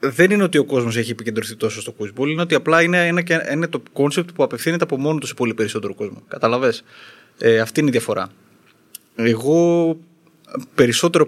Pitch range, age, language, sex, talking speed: 120-165 Hz, 20-39, Greek, male, 185 wpm